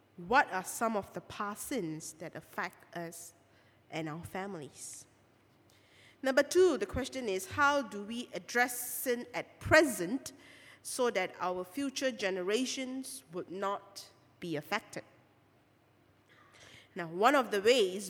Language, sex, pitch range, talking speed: English, female, 175-240 Hz, 130 wpm